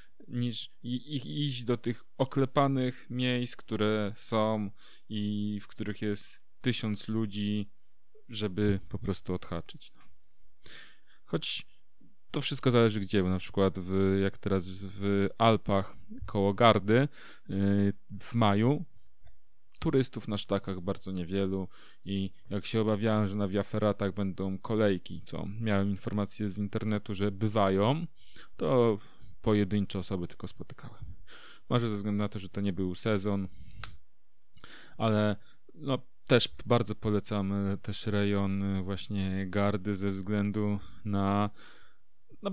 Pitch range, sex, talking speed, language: 100-115 Hz, male, 125 wpm, Polish